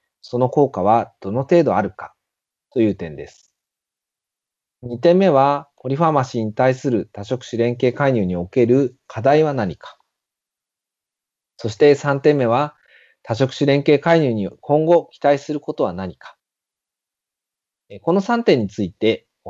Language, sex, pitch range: Japanese, male, 110-155 Hz